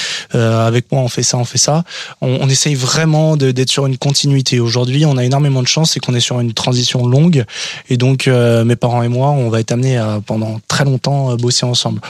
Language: French